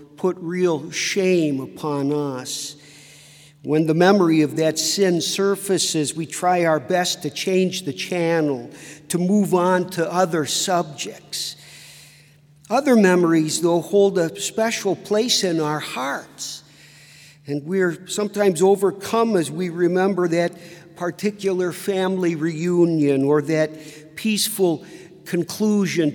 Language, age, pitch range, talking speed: English, 50-69, 150-180 Hz, 115 wpm